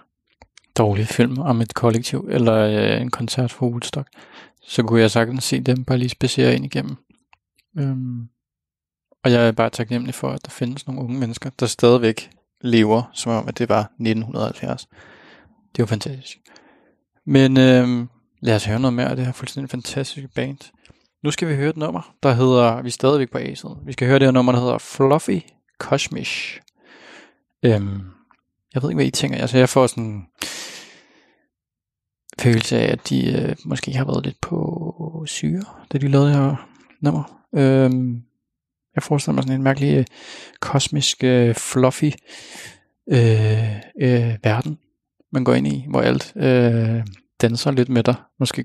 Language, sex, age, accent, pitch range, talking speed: Danish, male, 20-39, native, 115-135 Hz, 170 wpm